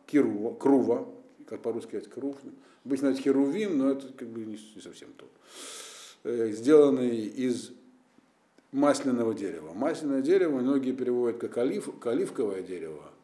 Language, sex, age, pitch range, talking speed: Russian, male, 50-69, 110-175 Hz, 125 wpm